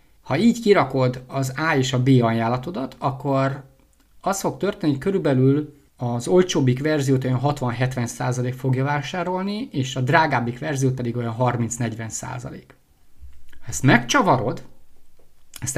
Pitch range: 125-150 Hz